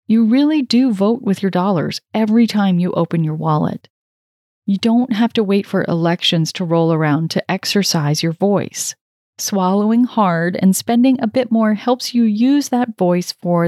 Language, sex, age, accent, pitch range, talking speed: English, female, 30-49, American, 175-230 Hz, 175 wpm